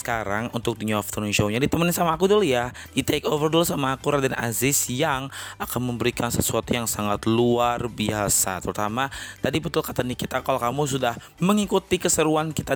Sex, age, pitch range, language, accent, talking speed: male, 20-39, 110-150 Hz, Indonesian, native, 175 wpm